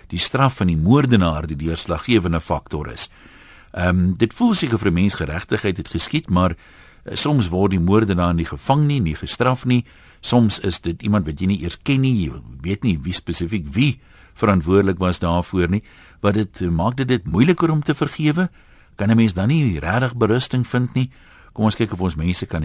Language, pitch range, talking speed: Dutch, 85-115 Hz, 195 wpm